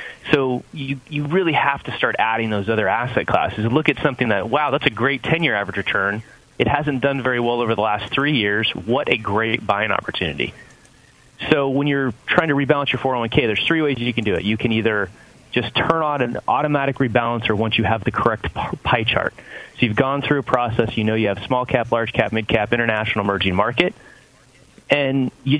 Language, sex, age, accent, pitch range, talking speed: English, male, 30-49, American, 110-140 Hz, 210 wpm